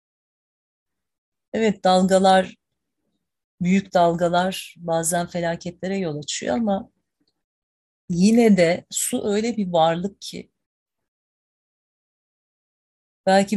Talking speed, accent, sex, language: 75 wpm, native, female, Turkish